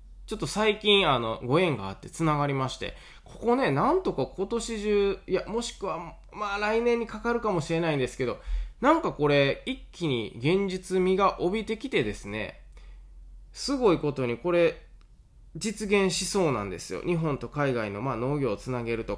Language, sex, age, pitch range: Japanese, male, 20-39, 120-185 Hz